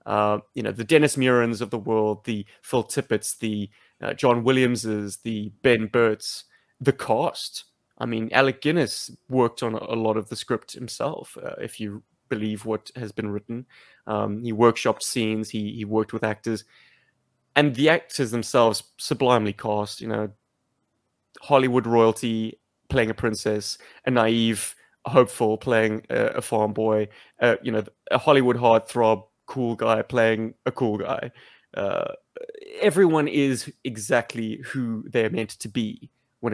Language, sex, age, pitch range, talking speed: English, male, 20-39, 110-130 Hz, 155 wpm